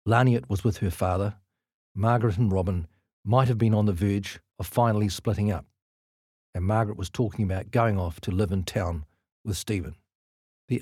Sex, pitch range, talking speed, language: male, 95-125 Hz, 175 wpm, English